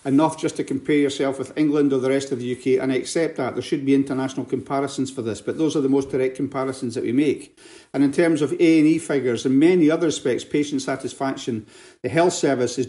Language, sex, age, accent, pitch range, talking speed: English, male, 50-69, British, 130-155 Hz, 235 wpm